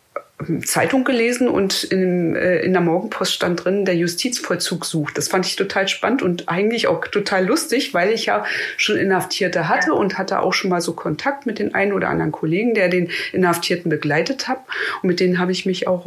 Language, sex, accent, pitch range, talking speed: German, female, German, 165-195 Hz, 200 wpm